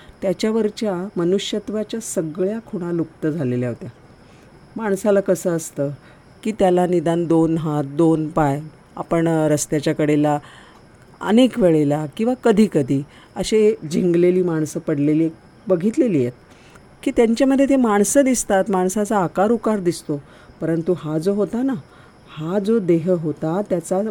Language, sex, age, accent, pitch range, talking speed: Marathi, female, 50-69, native, 155-205 Hz, 90 wpm